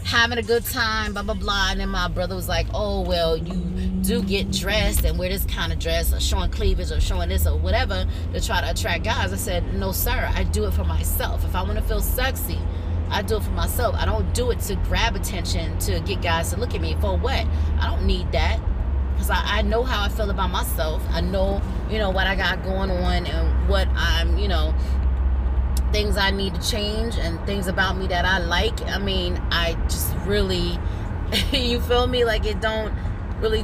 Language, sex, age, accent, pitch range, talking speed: English, female, 20-39, American, 75-90 Hz, 220 wpm